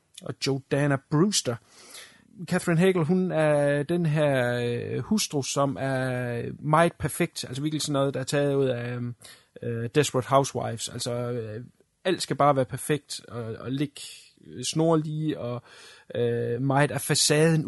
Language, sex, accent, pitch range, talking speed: Danish, male, native, 130-155 Hz, 155 wpm